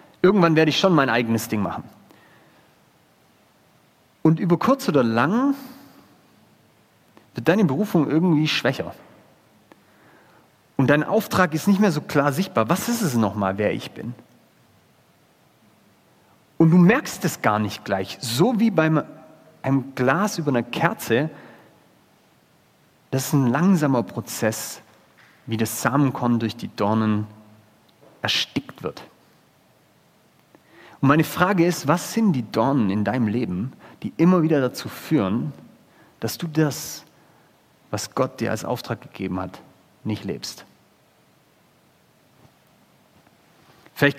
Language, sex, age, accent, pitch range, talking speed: German, male, 40-59, German, 115-175 Hz, 125 wpm